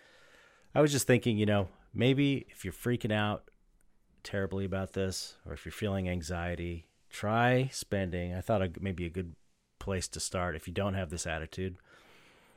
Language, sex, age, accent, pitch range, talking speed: English, male, 40-59, American, 80-105 Hz, 165 wpm